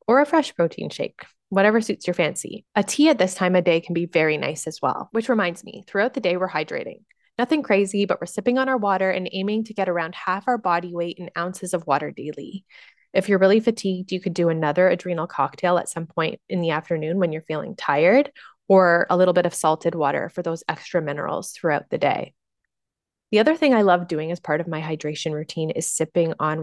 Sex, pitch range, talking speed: female, 170-210 Hz, 230 wpm